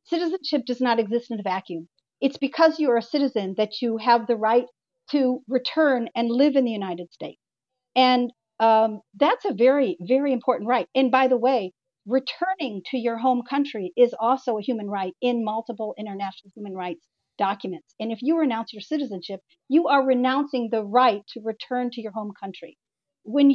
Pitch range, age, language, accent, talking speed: 205-265 Hz, 50-69, English, American, 185 wpm